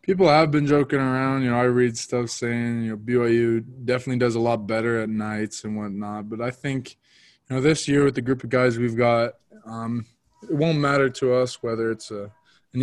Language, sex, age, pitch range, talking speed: English, male, 20-39, 110-120 Hz, 220 wpm